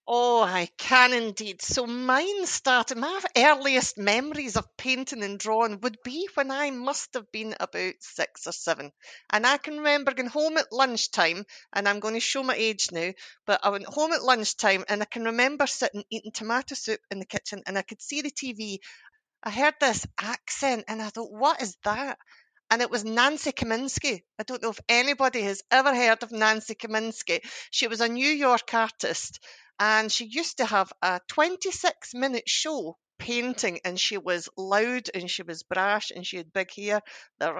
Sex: female